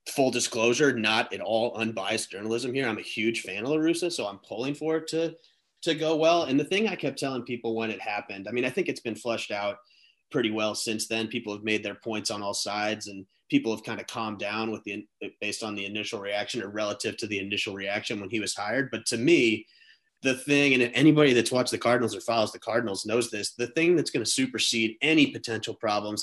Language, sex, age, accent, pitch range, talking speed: English, male, 30-49, American, 110-135 Hz, 235 wpm